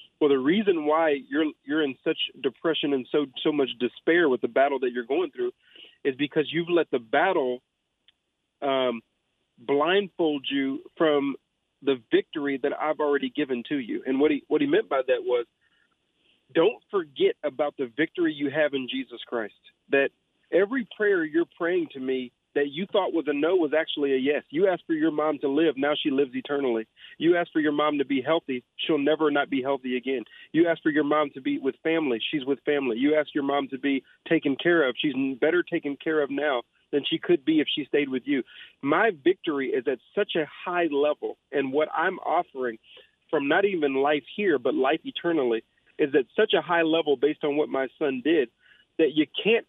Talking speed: 205 wpm